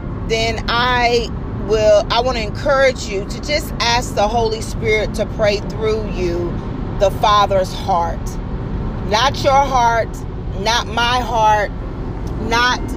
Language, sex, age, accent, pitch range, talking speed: English, female, 40-59, American, 185-230 Hz, 130 wpm